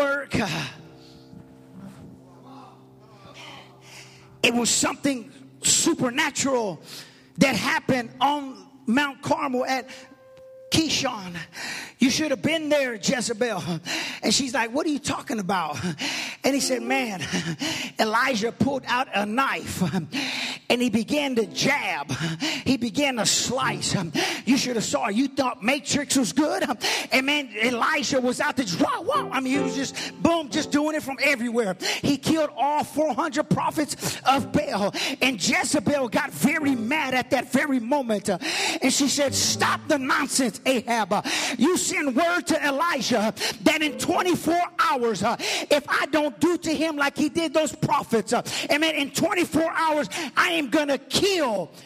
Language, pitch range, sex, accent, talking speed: English, 205-295 Hz, male, American, 140 wpm